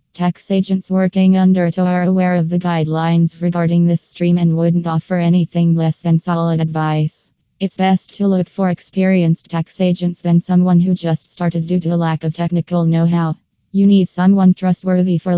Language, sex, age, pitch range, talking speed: English, female, 20-39, 165-180 Hz, 180 wpm